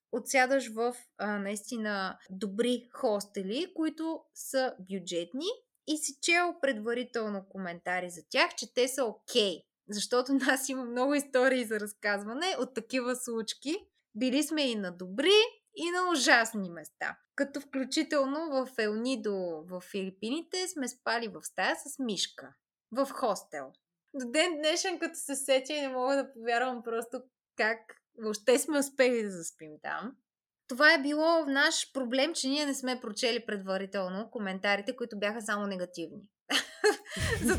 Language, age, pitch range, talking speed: Bulgarian, 20-39, 200-280 Hz, 140 wpm